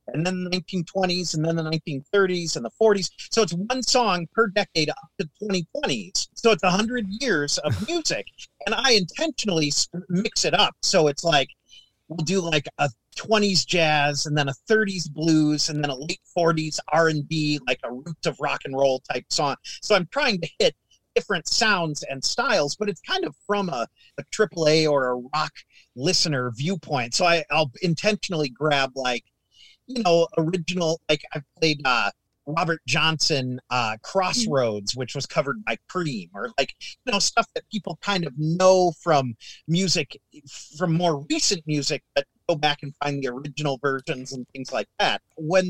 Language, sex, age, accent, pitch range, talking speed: English, male, 40-59, American, 145-185 Hz, 175 wpm